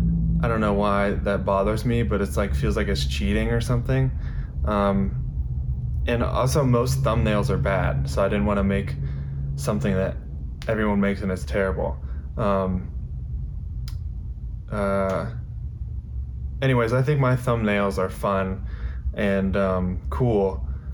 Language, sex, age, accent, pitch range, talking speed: English, male, 20-39, American, 70-115 Hz, 140 wpm